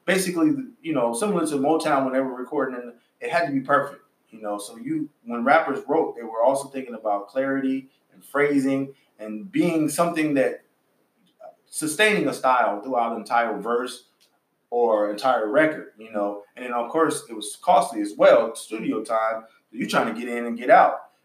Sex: male